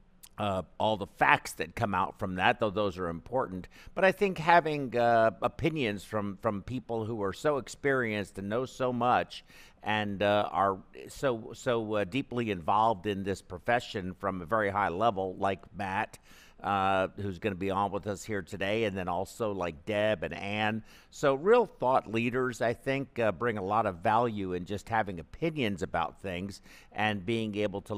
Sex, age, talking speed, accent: male, 50-69, 185 wpm, American